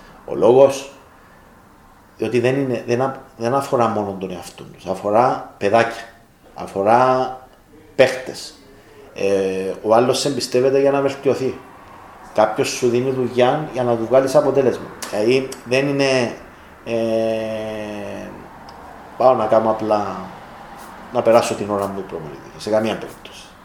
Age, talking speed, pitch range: 40-59, 125 wpm, 110-130 Hz